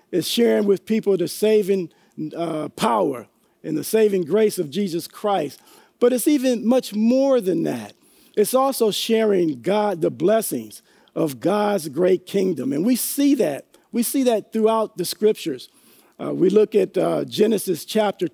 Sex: male